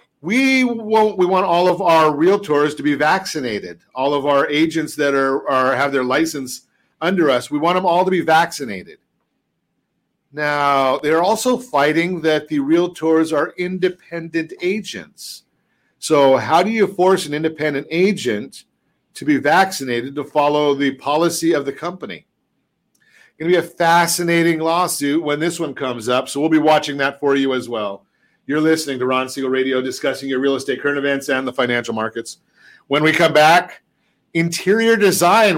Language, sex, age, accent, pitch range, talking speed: English, male, 50-69, American, 140-175 Hz, 170 wpm